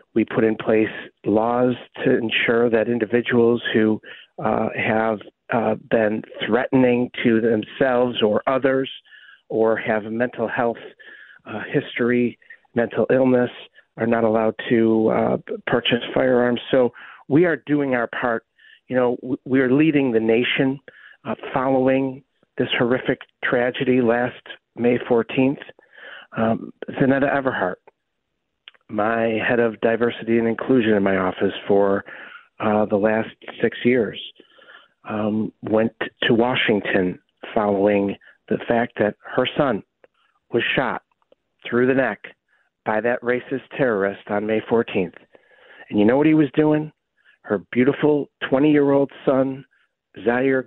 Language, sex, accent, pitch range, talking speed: English, male, American, 110-135 Hz, 130 wpm